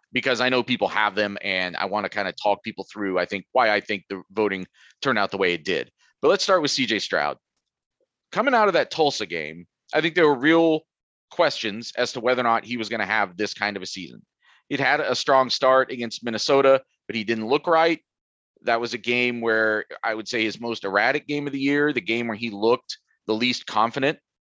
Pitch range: 105-135 Hz